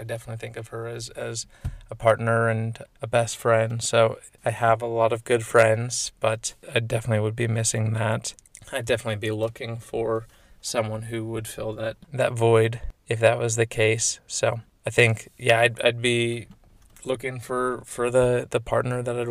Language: English